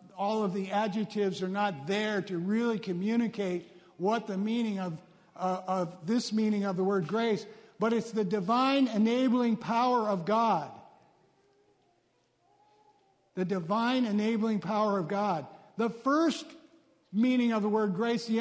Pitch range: 185-235 Hz